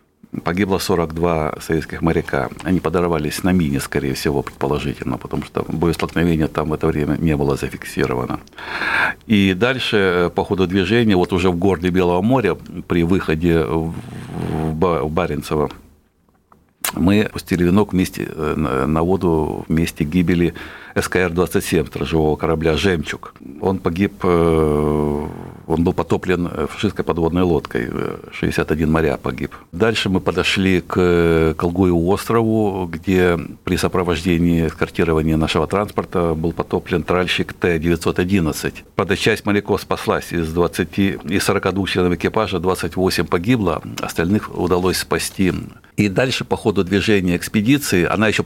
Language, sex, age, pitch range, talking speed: Russian, male, 60-79, 80-95 Hz, 125 wpm